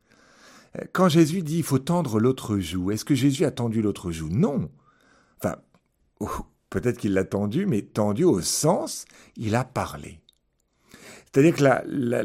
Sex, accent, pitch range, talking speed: male, French, 95-145 Hz, 175 wpm